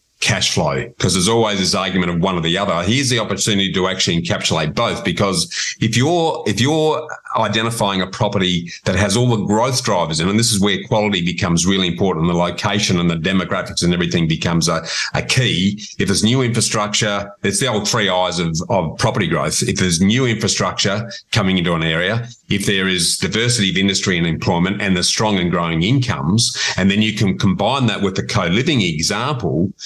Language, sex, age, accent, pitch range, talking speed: English, male, 40-59, Australian, 95-115 Hz, 195 wpm